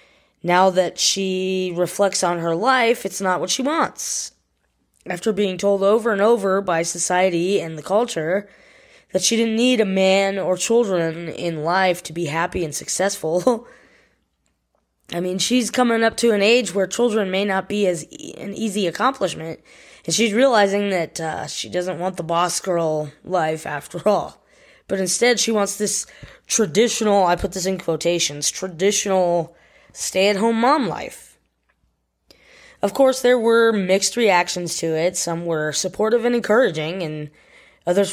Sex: female